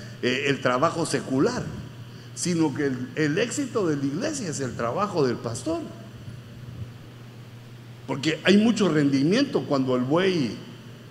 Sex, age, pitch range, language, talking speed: male, 60-79, 120-200 Hz, Spanish, 125 wpm